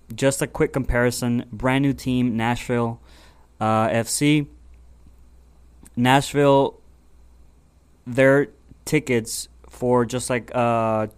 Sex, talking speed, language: male, 90 wpm, English